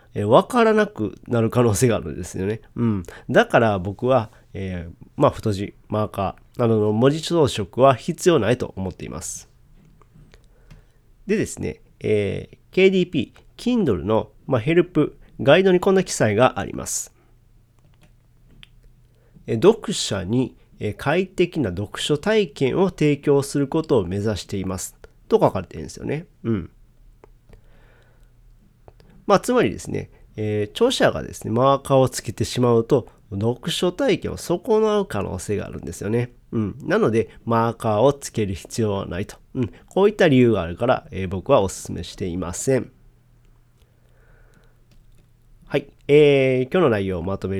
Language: Japanese